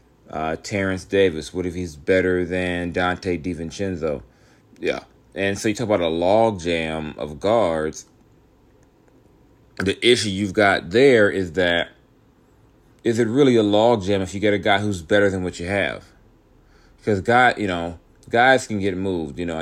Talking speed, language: 160 wpm, English